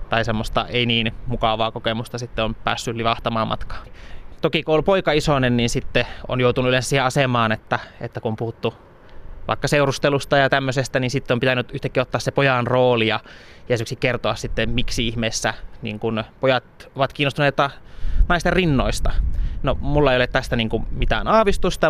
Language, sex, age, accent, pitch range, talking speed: Finnish, male, 20-39, native, 115-145 Hz, 170 wpm